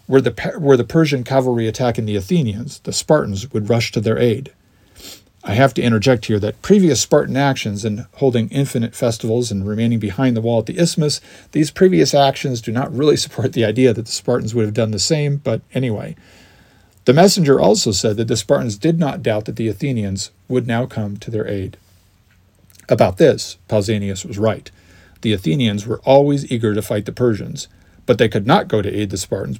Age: 50-69